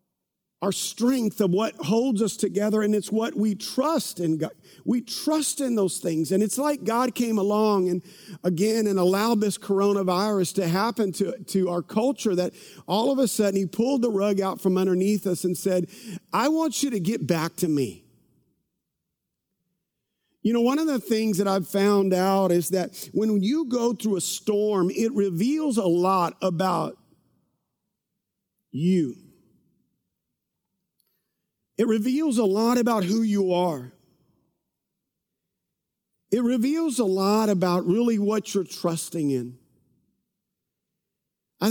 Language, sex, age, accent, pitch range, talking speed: English, male, 50-69, American, 180-215 Hz, 150 wpm